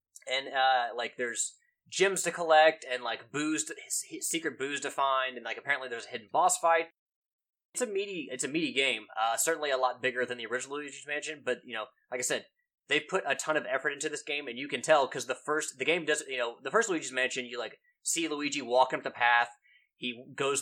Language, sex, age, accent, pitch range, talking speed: English, male, 20-39, American, 125-170 Hz, 240 wpm